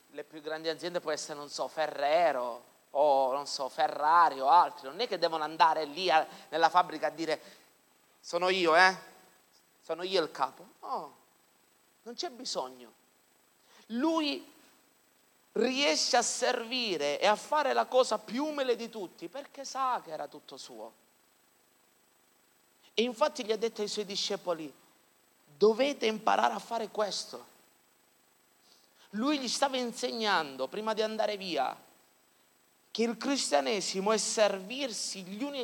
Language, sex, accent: Italian, male, native